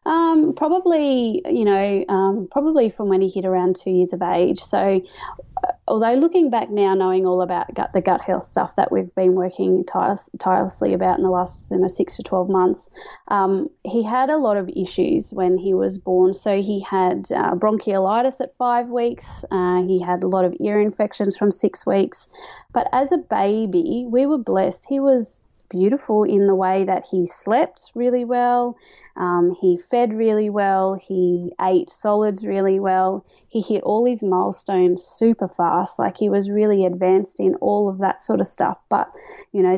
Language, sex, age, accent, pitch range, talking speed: English, female, 20-39, Australian, 185-225 Hz, 185 wpm